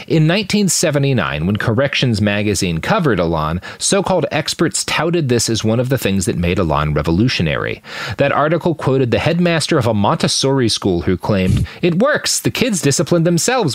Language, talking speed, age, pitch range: English, 160 wpm, 30-49, 110-160 Hz